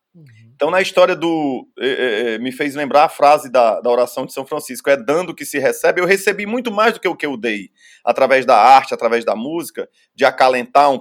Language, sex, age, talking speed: Portuguese, male, 30-49, 230 wpm